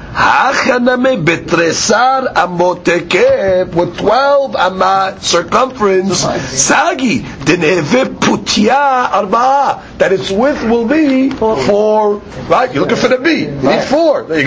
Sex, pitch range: male, 185-260 Hz